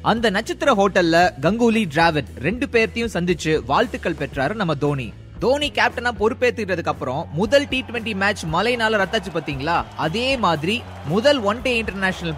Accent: native